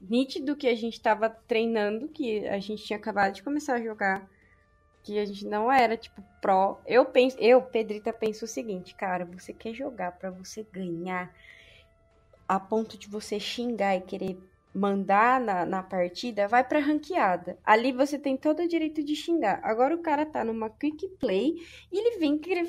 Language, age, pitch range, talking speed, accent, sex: Portuguese, 20-39, 215-330 Hz, 180 wpm, Brazilian, female